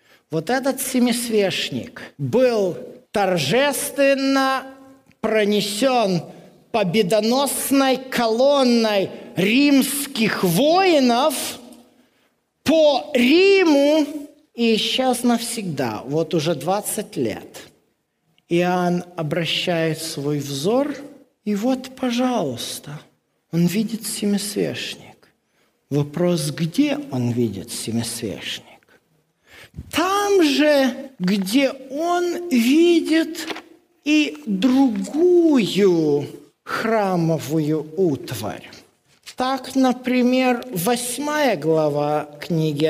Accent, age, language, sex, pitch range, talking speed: native, 50-69, Russian, male, 180-270 Hz, 65 wpm